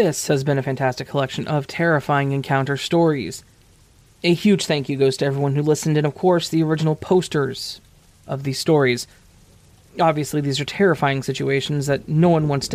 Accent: American